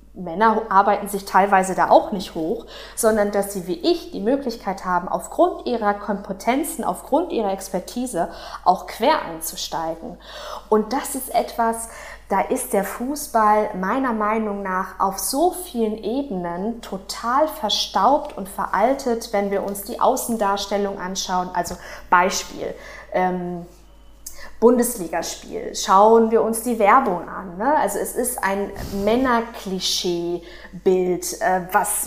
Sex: female